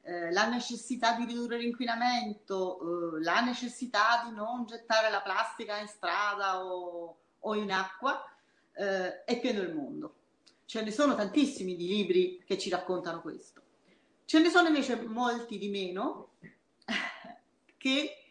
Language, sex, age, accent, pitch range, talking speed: Italian, female, 40-59, native, 190-270 Hz, 130 wpm